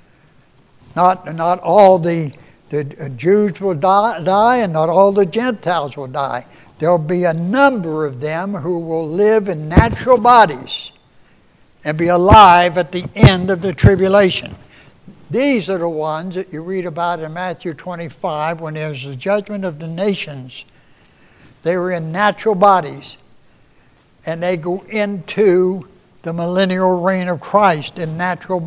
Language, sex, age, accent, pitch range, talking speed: English, male, 60-79, American, 145-185 Hz, 150 wpm